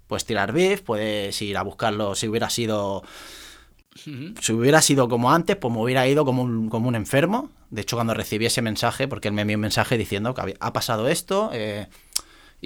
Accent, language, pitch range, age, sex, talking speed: Spanish, Spanish, 95-130 Hz, 30-49, male, 195 wpm